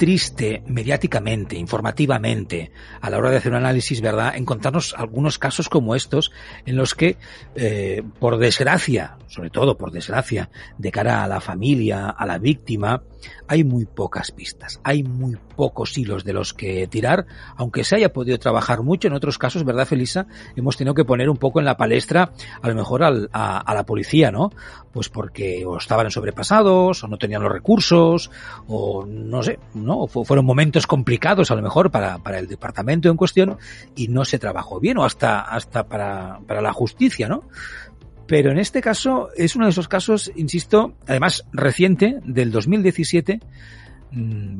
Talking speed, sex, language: 175 wpm, male, Spanish